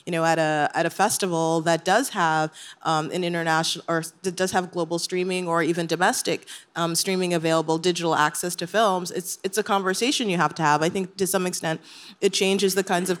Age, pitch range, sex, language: 30-49, 170-200 Hz, female, English